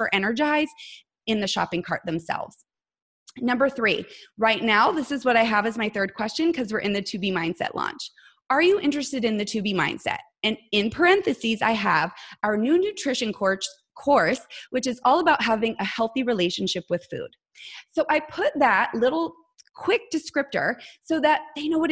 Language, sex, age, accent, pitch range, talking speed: English, female, 20-39, American, 210-285 Hz, 180 wpm